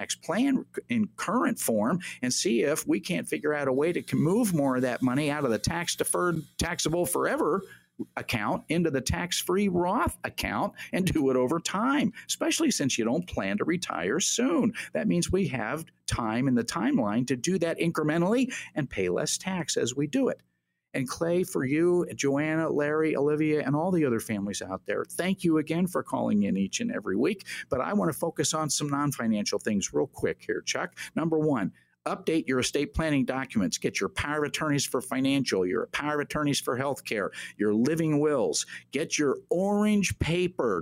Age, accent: 50-69, American